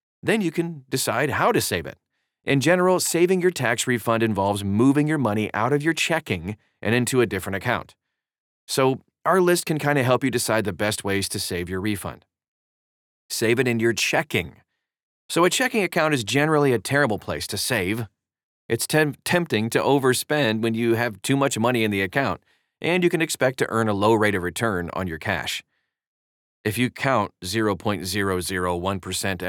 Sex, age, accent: male, 30-49, American